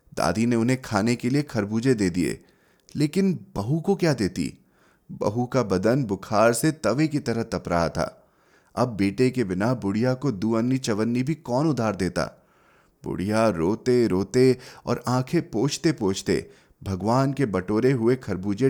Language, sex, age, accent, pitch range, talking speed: Hindi, male, 30-49, native, 115-150 Hz, 155 wpm